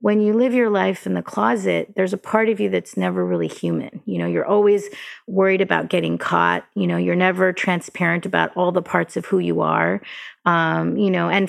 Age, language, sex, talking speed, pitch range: 30-49, English, female, 220 wpm, 165-200 Hz